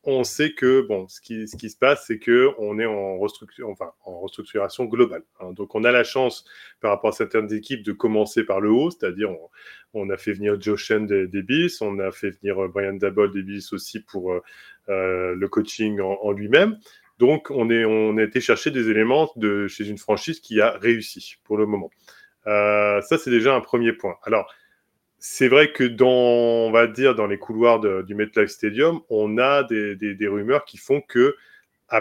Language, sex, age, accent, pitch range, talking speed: French, male, 20-39, French, 100-130 Hz, 210 wpm